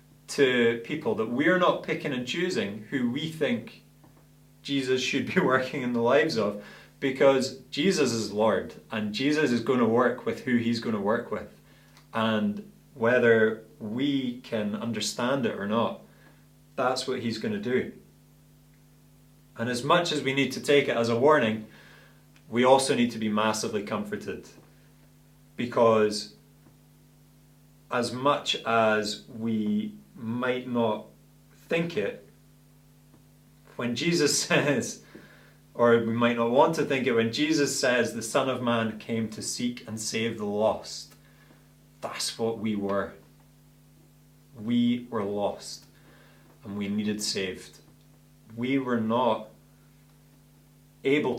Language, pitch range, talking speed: English, 110-140 Hz, 135 wpm